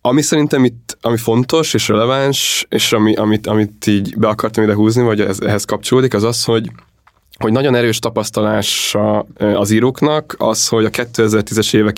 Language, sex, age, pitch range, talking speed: Hungarian, male, 20-39, 105-120 Hz, 160 wpm